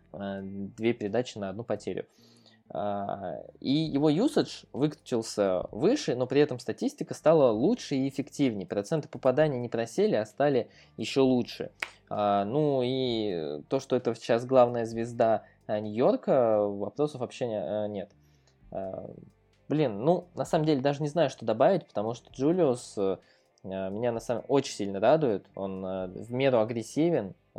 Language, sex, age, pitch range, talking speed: Russian, male, 20-39, 105-130 Hz, 135 wpm